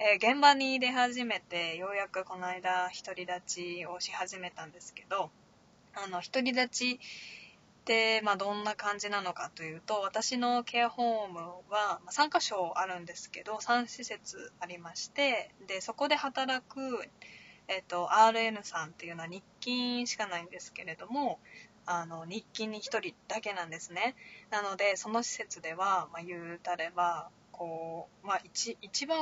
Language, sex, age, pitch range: Japanese, female, 20-39, 180-230 Hz